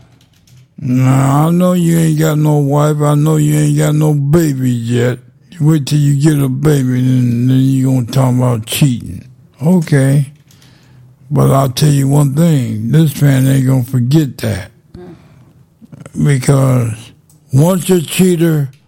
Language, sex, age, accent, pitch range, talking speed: English, male, 60-79, American, 125-150 Hz, 155 wpm